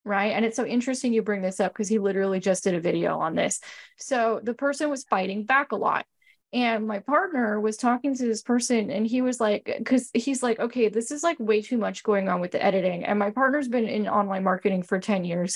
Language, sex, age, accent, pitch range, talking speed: English, female, 10-29, American, 195-250 Hz, 245 wpm